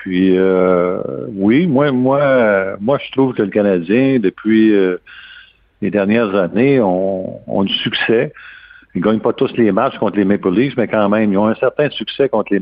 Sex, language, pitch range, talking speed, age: male, French, 95-110 Hz, 190 wpm, 50-69